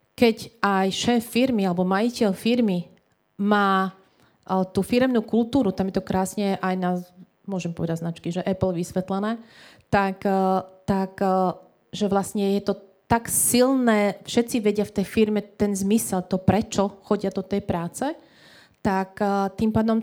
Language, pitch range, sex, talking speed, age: Slovak, 185-210 Hz, female, 140 wpm, 30-49